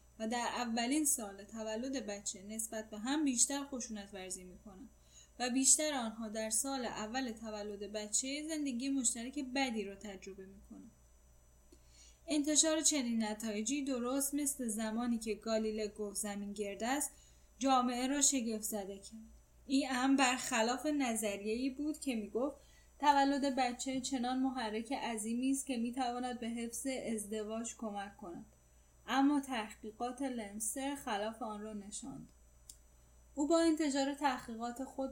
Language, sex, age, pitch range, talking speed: Persian, female, 10-29, 215-270 Hz, 135 wpm